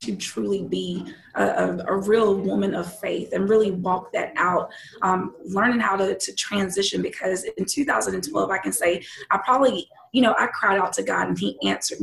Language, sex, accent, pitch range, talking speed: English, female, American, 180-220 Hz, 190 wpm